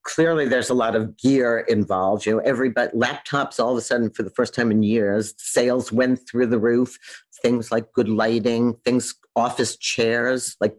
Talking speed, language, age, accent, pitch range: 190 wpm, English, 50-69, American, 115-155 Hz